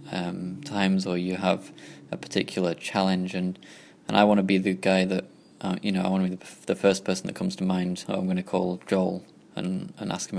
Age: 20-39